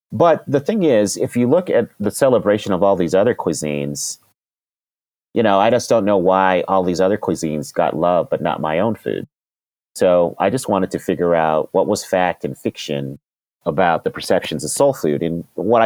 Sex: male